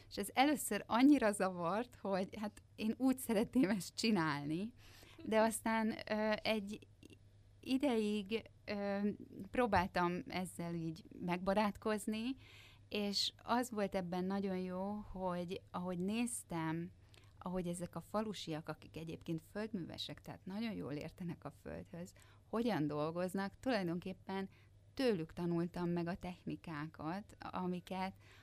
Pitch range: 155-205 Hz